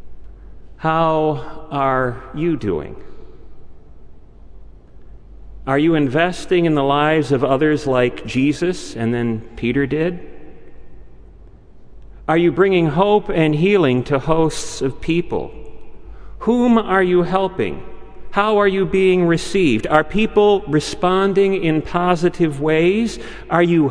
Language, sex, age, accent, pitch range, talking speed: English, male, 40-59, American, 145-190 Hz, 115 wpm